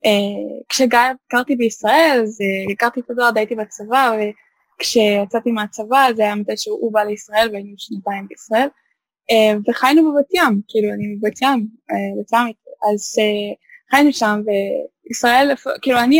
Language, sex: English, female